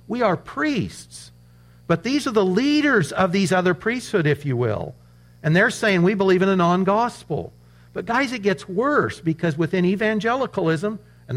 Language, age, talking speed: English, 50-69, 170 wpm